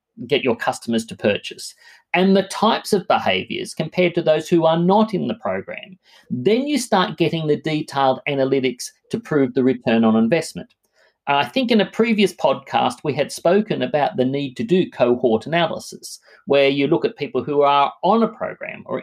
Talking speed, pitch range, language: 185 wpm, 135-190 Hz, English